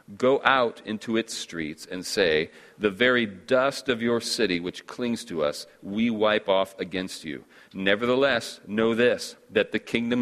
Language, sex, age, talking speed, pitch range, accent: English, male, 40-59, 165 wpm, 95-120 Hz, American